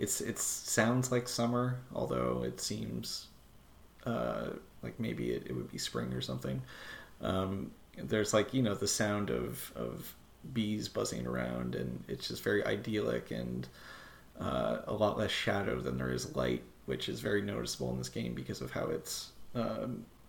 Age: 30-49